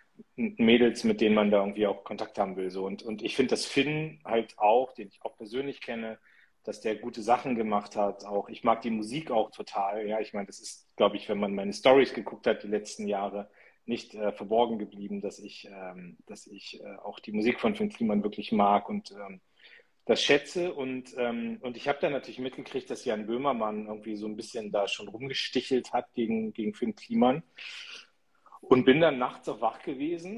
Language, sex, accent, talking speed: German, male, German, 210 wpm